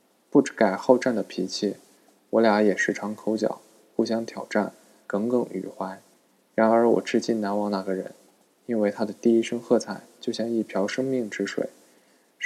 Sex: male